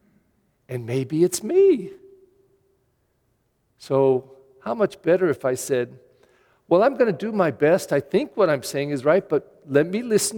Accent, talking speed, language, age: American, 170 wpm, English, 50-69